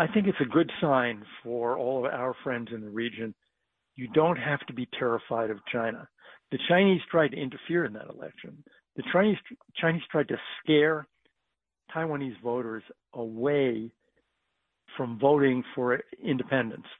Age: 60-79